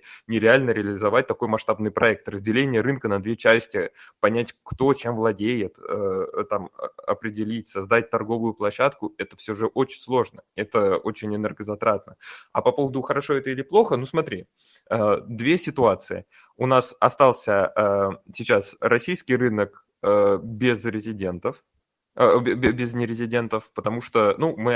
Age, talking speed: 20-39, 125 wpm